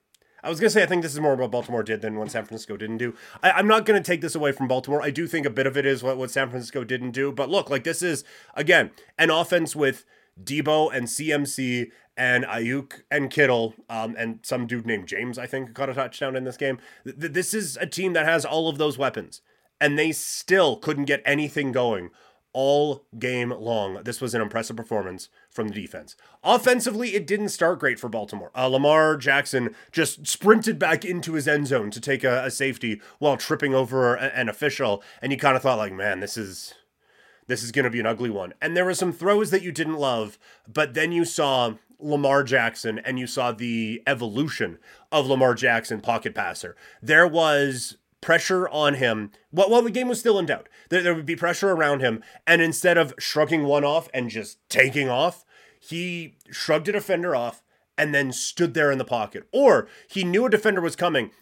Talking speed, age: 210 wpm, 30-49